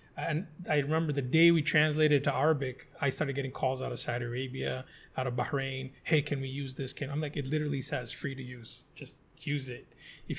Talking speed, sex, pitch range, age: 220 wpm, male, 145-165 Hz, 30-49